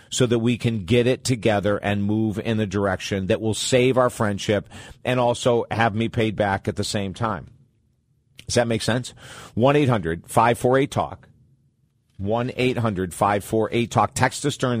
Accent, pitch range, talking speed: American, 110-130 Hz, 145 wpm